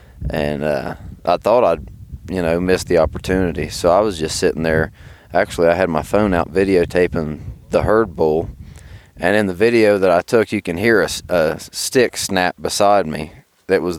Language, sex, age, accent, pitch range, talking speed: English, male, 20-39, American, 85-105 Hz, 190 wpm